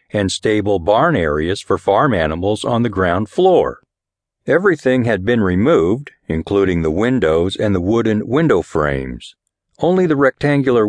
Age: 50-69